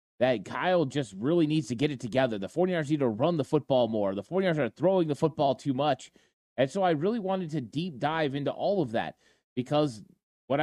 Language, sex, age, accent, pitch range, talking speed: English, male, 30-49, American, 140-180 Hz, 225 wpm